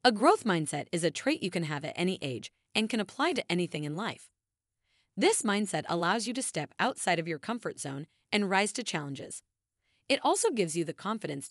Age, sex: 30-49, female